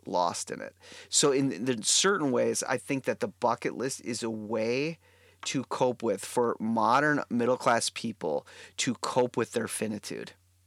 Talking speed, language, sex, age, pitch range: 170 wpm, English, male, 30-49, 115-150 Hz